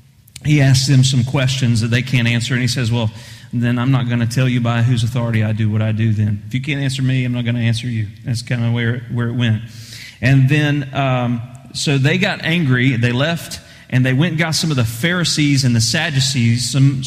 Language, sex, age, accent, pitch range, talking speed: English, male, 30-49, American, 120-155 Hz, 245 wpm